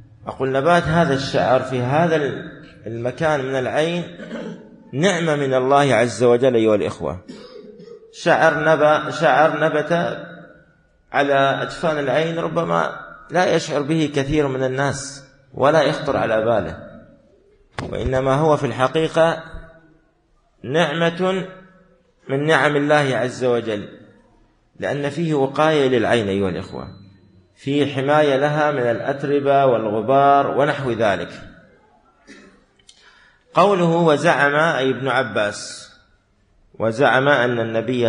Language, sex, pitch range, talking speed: Arabic, male, 125-155 Hz, 105 wpm